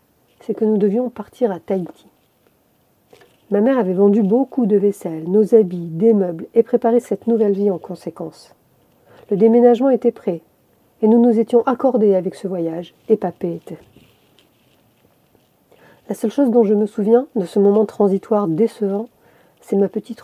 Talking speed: 165 wpm